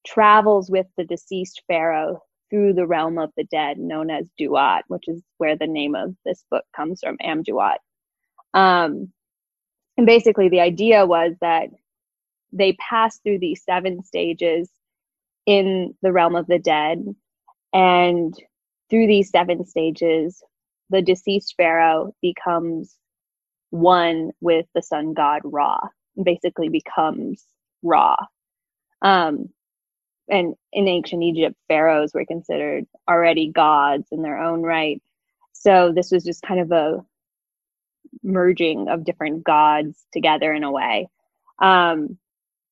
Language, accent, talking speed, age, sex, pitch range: English, American, 130 wpm, 20-39, female, 160-190 Hz